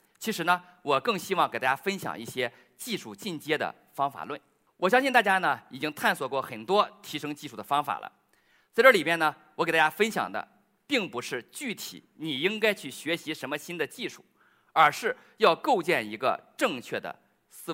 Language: Chinese